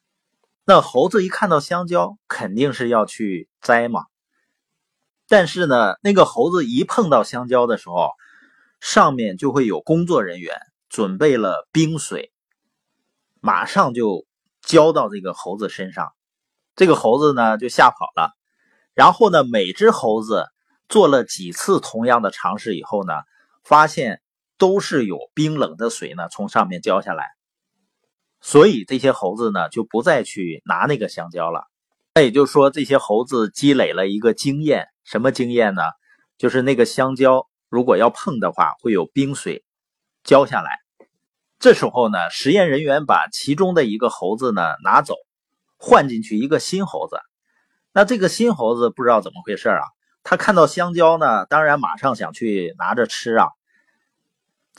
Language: Chinese